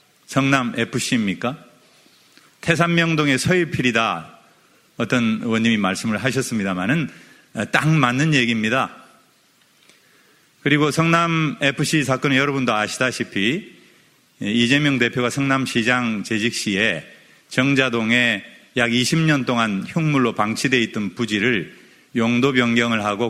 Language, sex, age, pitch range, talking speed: English, male, 40-59, 115-150 Hz, 85 wpm